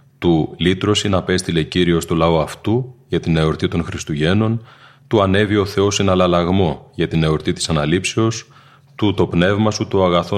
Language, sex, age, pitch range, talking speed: Greek, male, 30-49, 85-105 Hz, 170 wpm